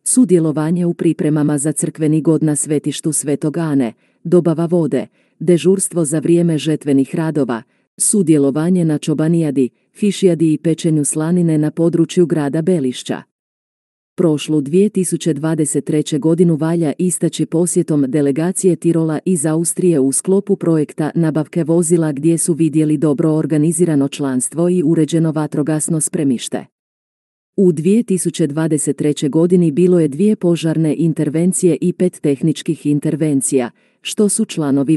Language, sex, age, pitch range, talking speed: Croatian, female, 40-59, 150-175 Hz, 115 wpm